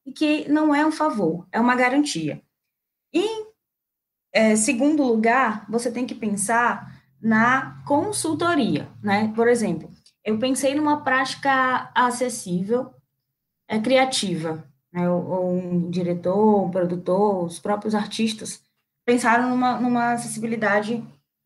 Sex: female